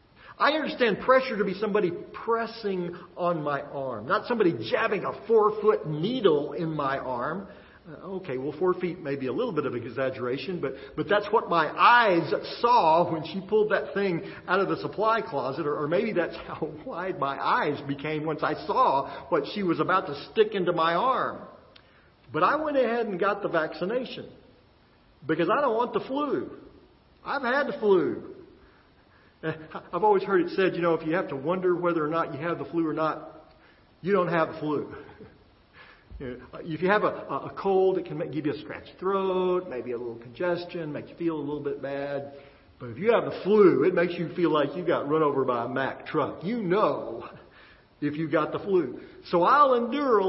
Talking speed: 200 wpm